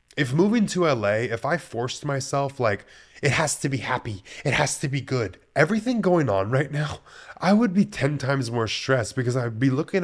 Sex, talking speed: male, 210 wpm